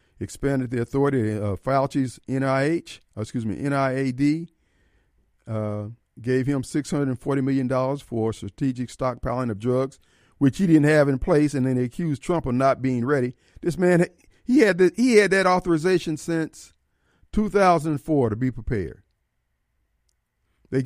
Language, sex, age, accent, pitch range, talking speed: English, male, 50-69, American, 115-160 Hz, 140 wpm